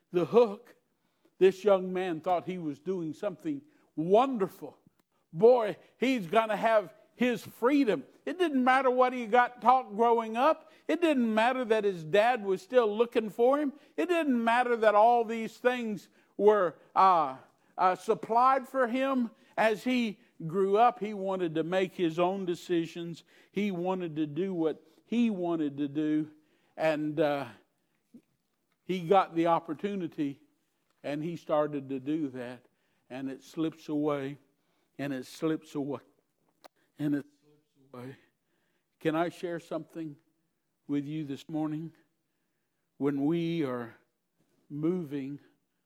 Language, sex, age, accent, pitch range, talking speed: English, male, 50-69, American, 150-220 Hz, 140 wpm